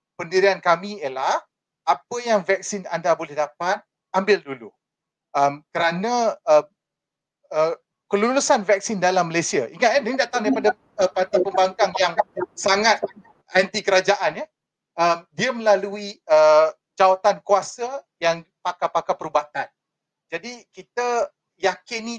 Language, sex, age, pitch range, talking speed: Malay, male, 40-59, 165-215 Hz, 105 wpm